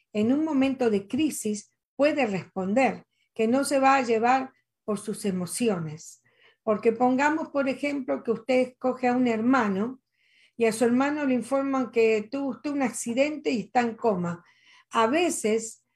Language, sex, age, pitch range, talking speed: Spanish, female, 50-69, 220-270 Hz, 160 wpm